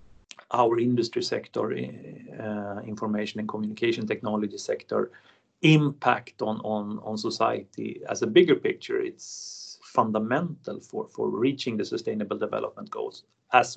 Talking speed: 120 wpm